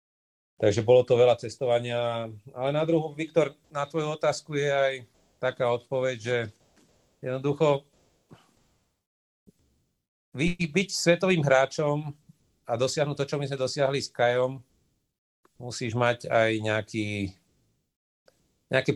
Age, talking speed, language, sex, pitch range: 40-59, 110 wpm, Slovak, male, 105-130 Hz